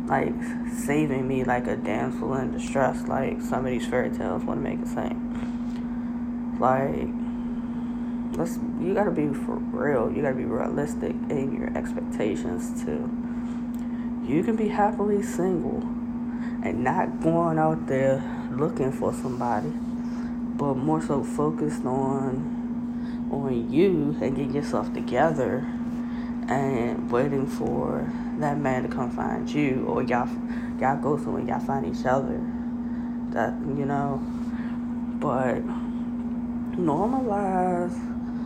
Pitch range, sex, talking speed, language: 205-240 Hz, female, 125 wpm, English